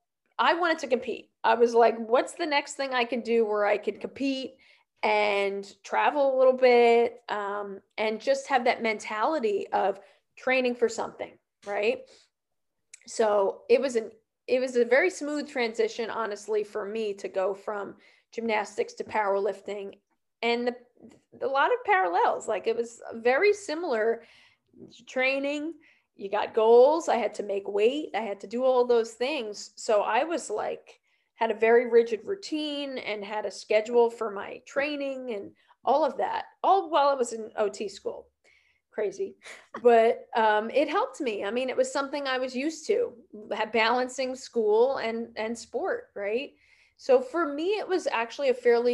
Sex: female